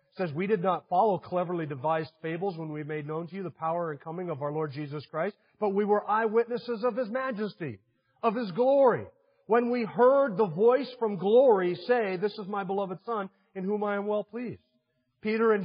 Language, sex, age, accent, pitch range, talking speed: English, male, 40-59, American, 170-215 Hz, 205 wpm